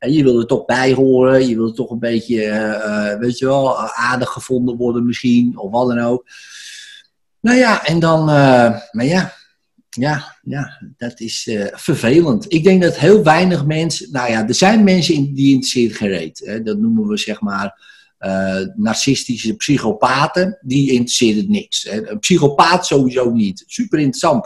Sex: male